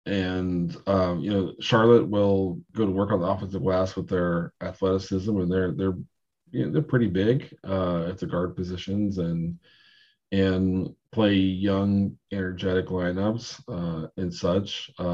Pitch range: 90-105 Hz